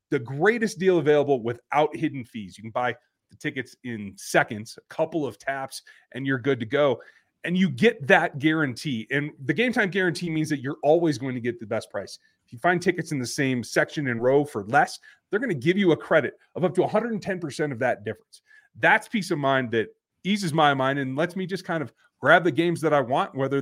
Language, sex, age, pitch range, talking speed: English, male, 30-49, 130-175 Hz, 230 wpm